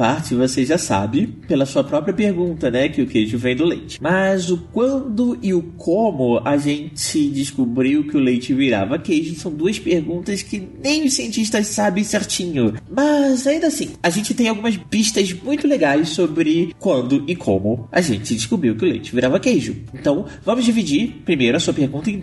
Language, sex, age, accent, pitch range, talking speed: Portuguese, male, 20-39, Brazilian, 135-225 Hz, 185 wpm